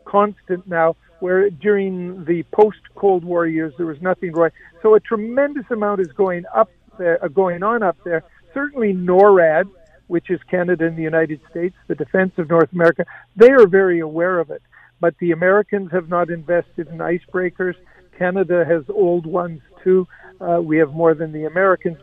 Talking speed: 175 wpm